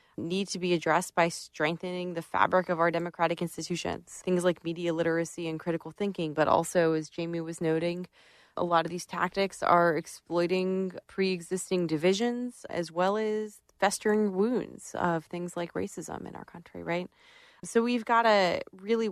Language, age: English, 20-39